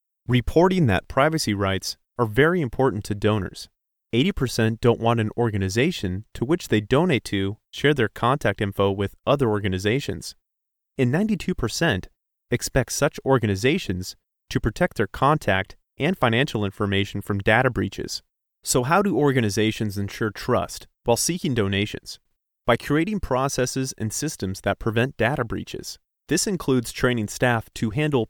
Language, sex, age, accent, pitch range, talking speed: English, male, 30-49, American, 100-135 Hz, 140 wpm